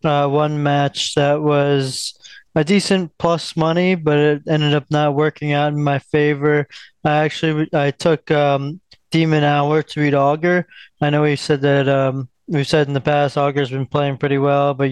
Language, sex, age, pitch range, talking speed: English, male, 20-39, 135-150 Hz, 185 wpm